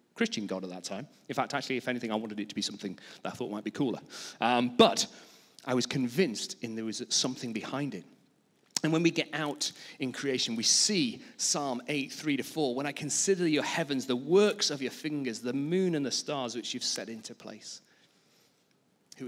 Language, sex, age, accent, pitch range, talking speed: English, male, 40-59, British, 120-175 Hz, 210 wpm